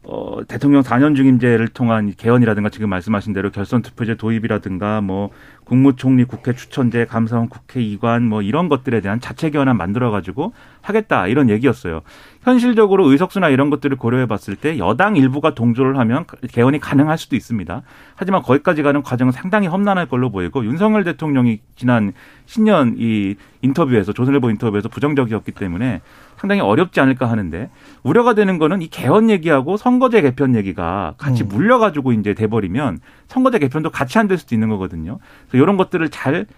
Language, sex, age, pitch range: Korean, male, 40-59, 115-160 Hz